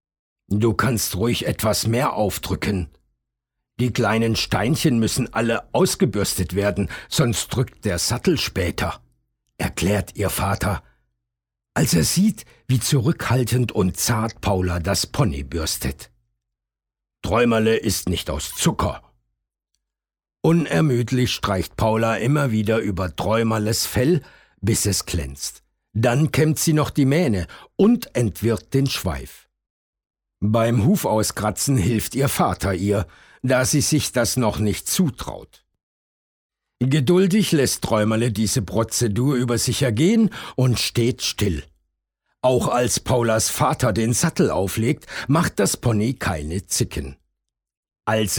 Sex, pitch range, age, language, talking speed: male, 95-125 Hz, 60-79, German, 120 wpm